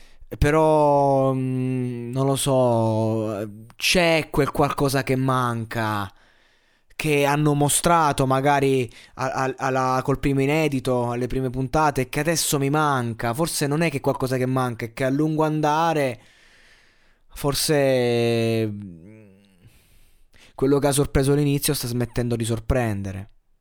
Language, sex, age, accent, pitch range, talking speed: Italian, male, 20-39, native, 110-135 Hz, 125 wpm